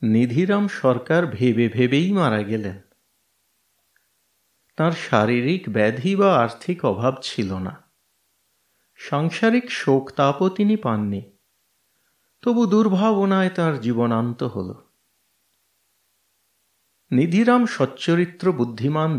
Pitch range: 115-175 Hz